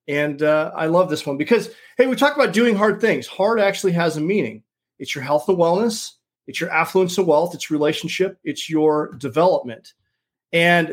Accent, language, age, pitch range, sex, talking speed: American, English, 40-59, 145-185 Hz, male, 190 wpm